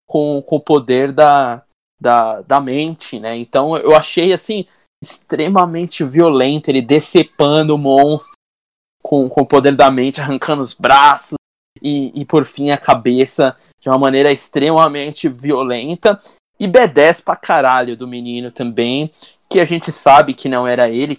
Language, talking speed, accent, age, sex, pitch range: Portuguese, 155 wpm, Brazilian, 20-39, male, 130-170 Hz